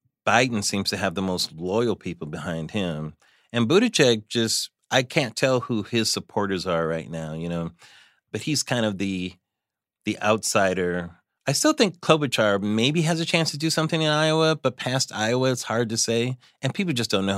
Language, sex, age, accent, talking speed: English, male, 30-49, American, 195 wpm